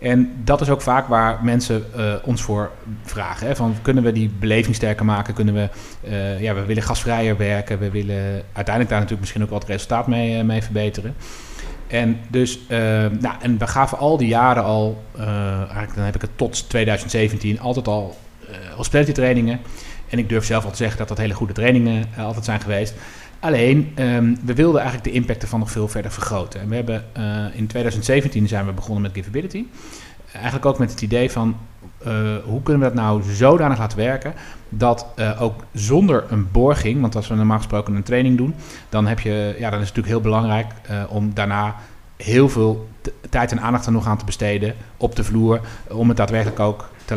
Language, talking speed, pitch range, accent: Dutch, 210 wpm, 105-120 Hz, Dutch